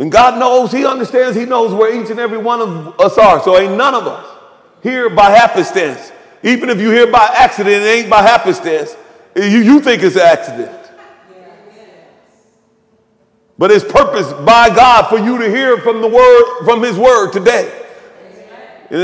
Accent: American